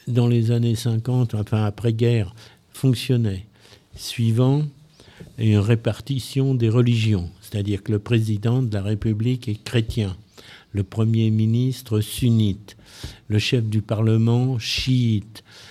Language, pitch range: French, 105-130 Hz